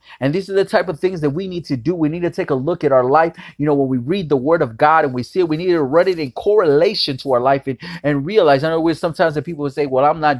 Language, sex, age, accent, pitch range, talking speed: English, male, 30-49, American, 140-180 Hz, 335 wpm